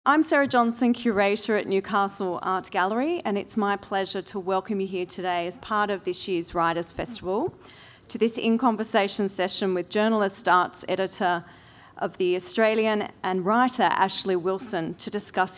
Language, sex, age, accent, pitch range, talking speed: English, female, 40-59, Australian, 175-210 Hz, 160 wpm